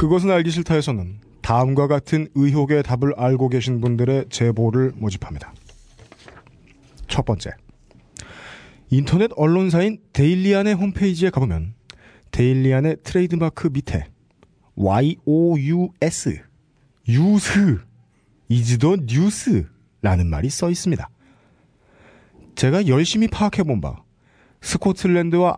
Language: Korean